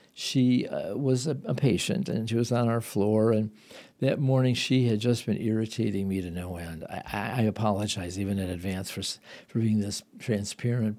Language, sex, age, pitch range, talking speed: English, male, 50-69, 105-125 Hz, 190 wpm